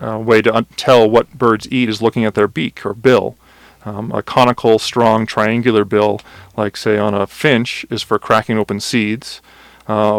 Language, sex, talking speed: English, male, 190 wpm